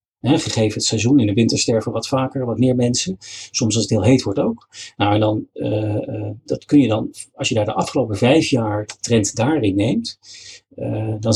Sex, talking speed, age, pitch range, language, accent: male, 205 wpm, 40-59, 110-135 Hz, Dutch, Dutch